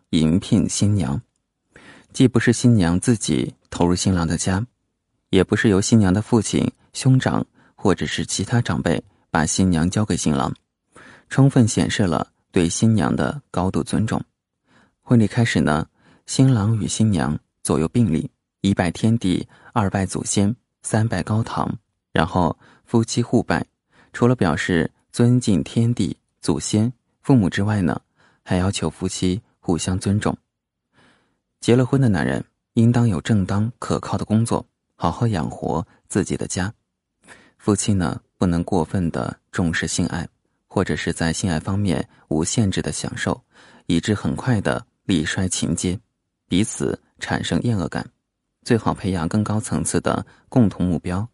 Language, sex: Chinese, male